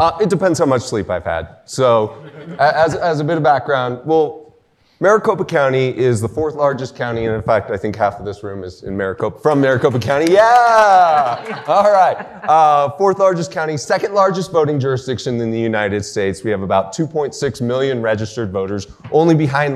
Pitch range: 120-175 Hz